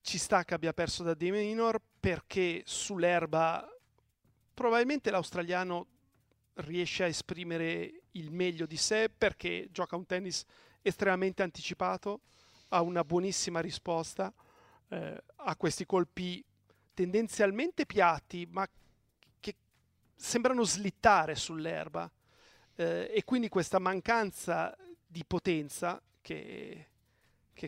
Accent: native